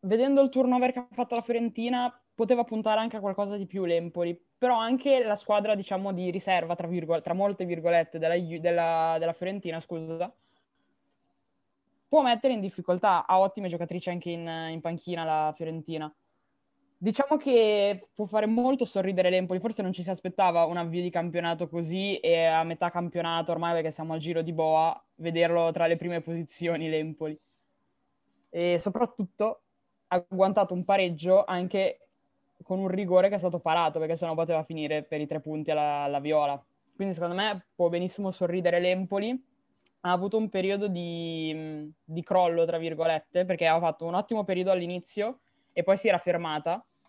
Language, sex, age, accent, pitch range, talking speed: Italian, female, 10-29, native, 165-200 Hz, 170 wpm